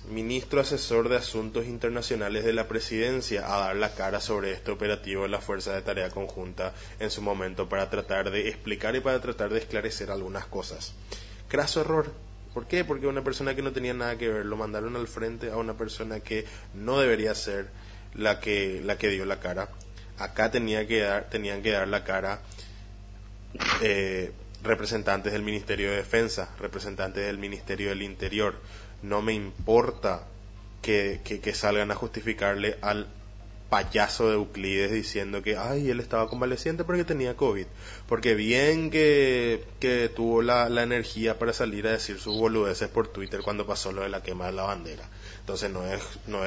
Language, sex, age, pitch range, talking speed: Spanish, male, 20-39, 100-115 Hz, 175 wpm